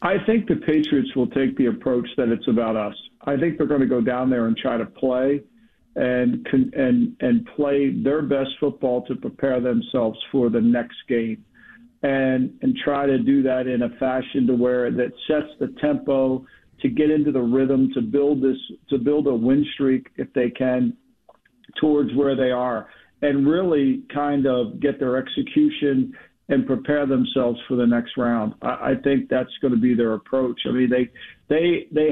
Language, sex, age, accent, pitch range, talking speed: English, male, 50-69, American, 125-150 Hz, 190 wpm